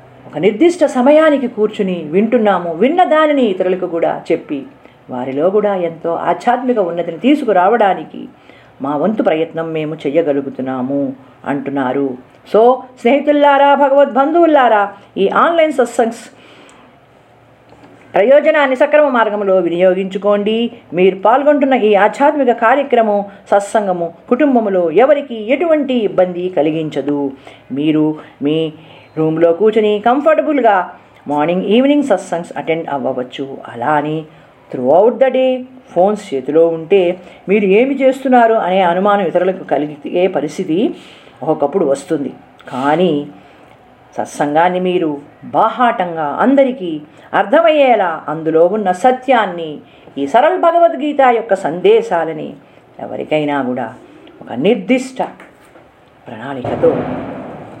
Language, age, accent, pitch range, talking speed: Telugu, 50-69, native, 160-255 Hz, 90 wpm